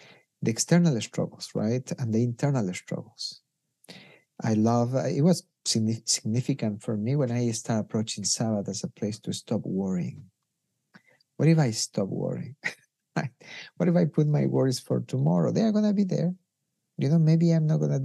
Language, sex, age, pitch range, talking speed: English, male, 50-69, 115-165 Hz, 180 wpm